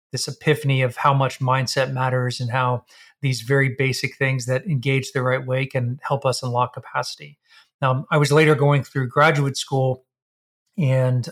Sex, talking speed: male, 170 wpm